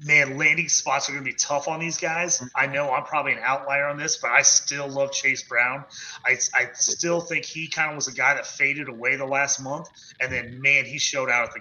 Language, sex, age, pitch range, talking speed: English, male, 30-49, 125-155 Hz, 255 wpm